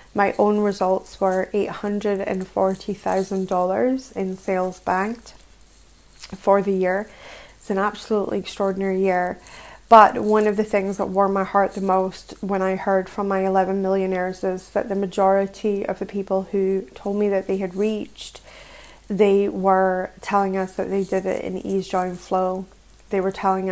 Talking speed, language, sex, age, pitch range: 160 wpm, English, female, 20-39, 185-200 Hz